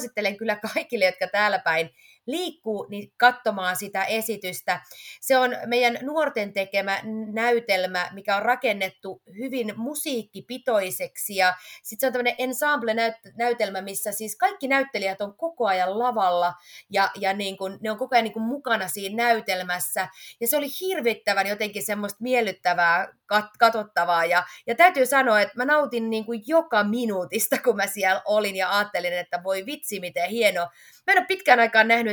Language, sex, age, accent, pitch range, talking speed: Finnish, female, 30-49, native, 190-245 Hz, 150 wpm